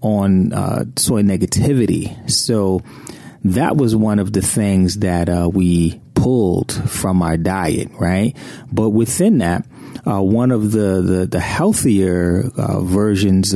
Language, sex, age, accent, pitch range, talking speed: English, male, 30-49, American, 90-115 Hz, 135 wpm